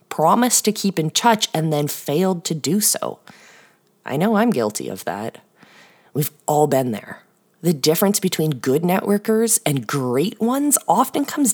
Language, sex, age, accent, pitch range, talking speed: English, female, 20-39, American, 150-230 Hz, 160 wpm